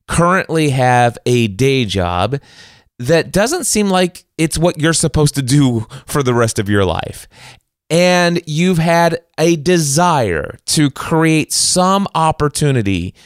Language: English